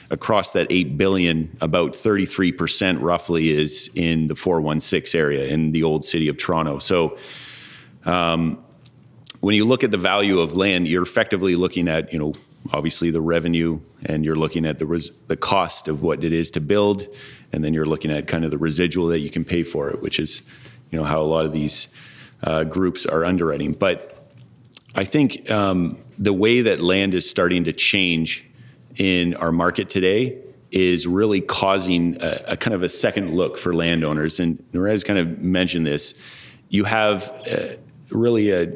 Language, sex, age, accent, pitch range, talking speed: English, male, 30-49, American, 80-95 Hz, 185 wpm